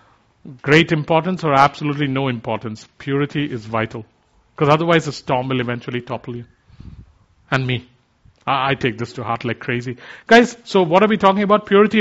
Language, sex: English, male